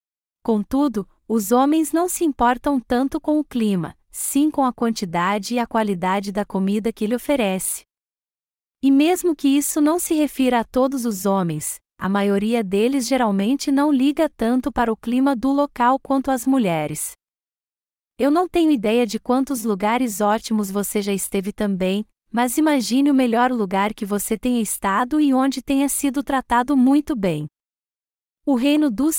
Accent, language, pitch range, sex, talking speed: Brazilian, Portuguese, 210-280 Hz, female, 160 wpm